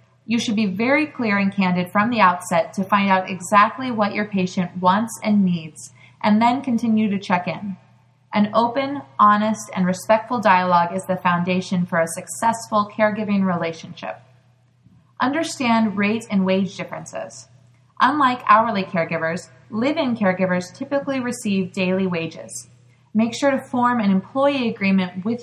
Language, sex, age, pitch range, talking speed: English, female, 20-39, 180-230 Hz, 145 wpm